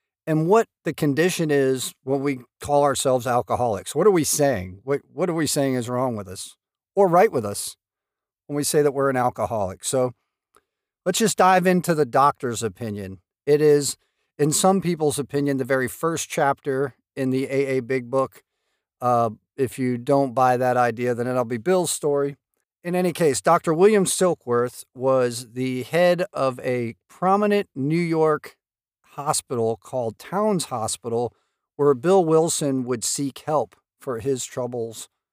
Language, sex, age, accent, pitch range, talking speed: English, male, 50-69, American, 125-165 Hz, 165 wpm